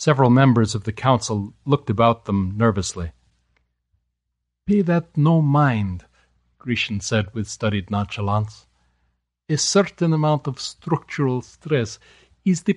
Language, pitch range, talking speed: English, 100-145 Hz, 120 wpm